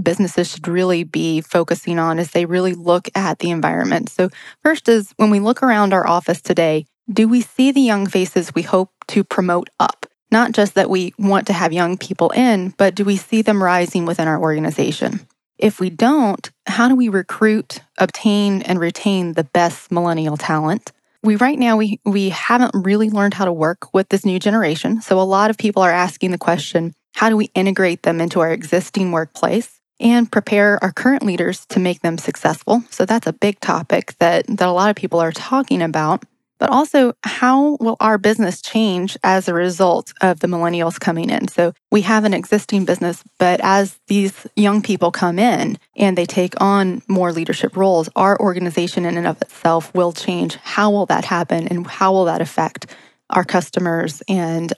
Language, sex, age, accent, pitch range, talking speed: English, female, 20-39, American, 175-215 Hz, 195 wpm